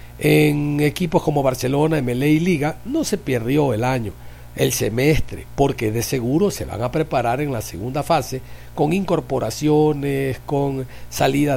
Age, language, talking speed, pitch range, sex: 50-69, Spanish, 150 wpm, 120-160 Hz, male